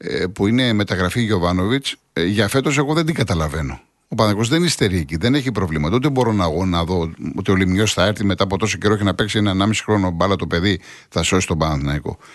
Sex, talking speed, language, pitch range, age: male, 220 wpm, Greek, 95-140 Hz, 50-69